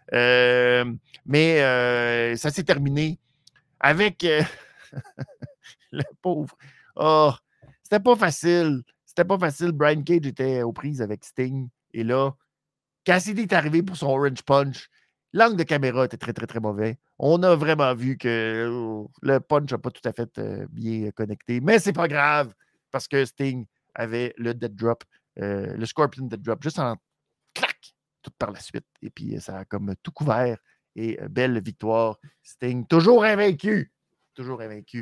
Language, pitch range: French, 120-165 Hz